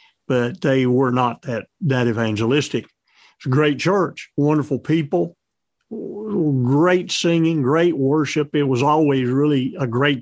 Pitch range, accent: 125-160 Hz, American